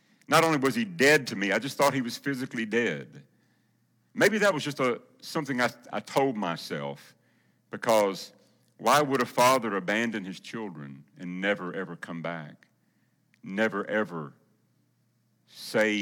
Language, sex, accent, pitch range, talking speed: English, male, American, 90-125 Hz, 150 wpm